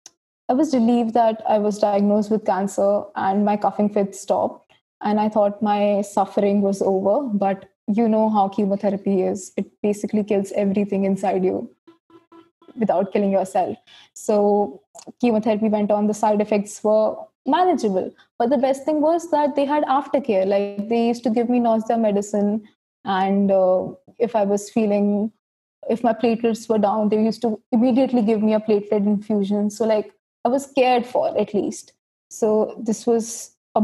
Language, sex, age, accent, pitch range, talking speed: English, female, 20-39, Indian, 205-235 Hz, 165 wpm